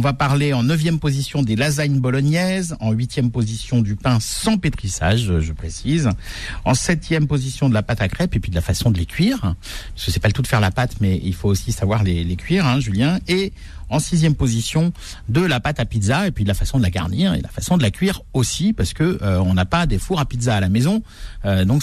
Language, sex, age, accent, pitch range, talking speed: French, male, 50-69, French, 100-145 Hz, 255 wpm